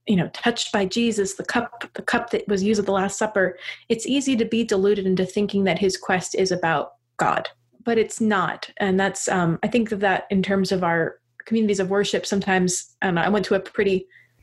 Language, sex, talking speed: English, female, 220 wpm